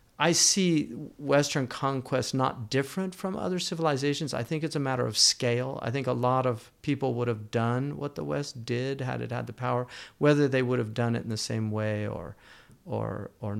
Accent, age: American, 40-59